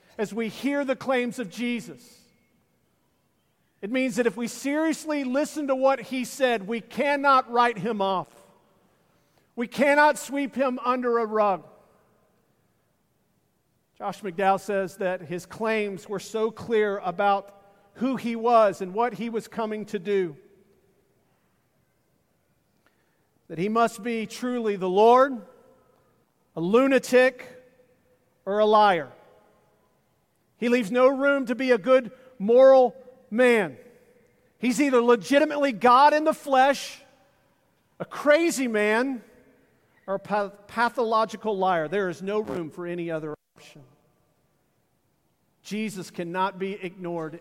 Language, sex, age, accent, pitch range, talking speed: English, male, 50-69, American, 195-255 Hz, 125 wpm